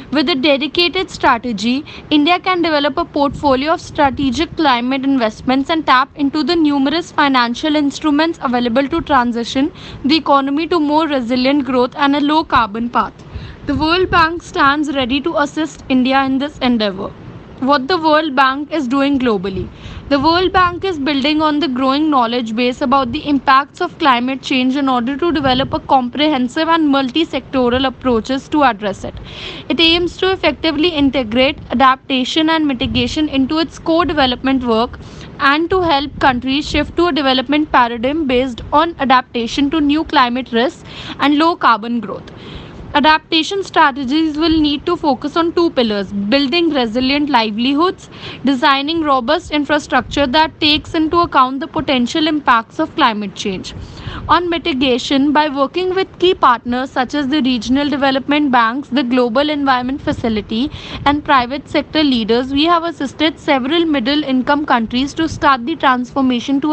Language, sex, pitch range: English, female, 260-315 Hz